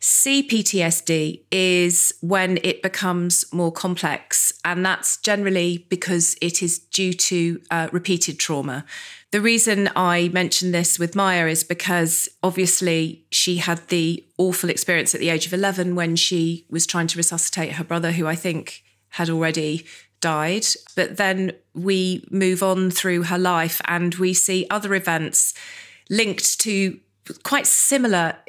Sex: female